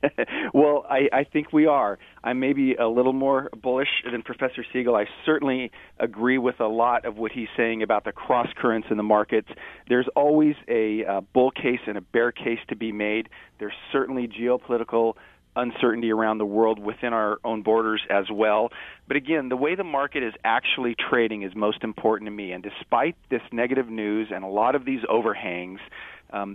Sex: male